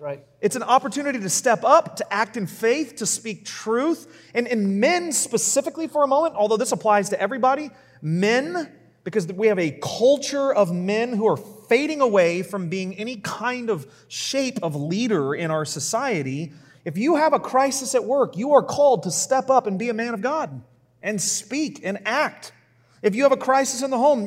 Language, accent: English, American